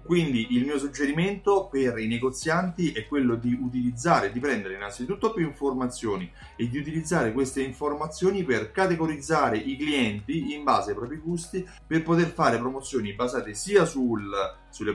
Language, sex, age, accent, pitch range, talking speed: Italian, male, 30-49, native, 110-145 Hz, 155 wpm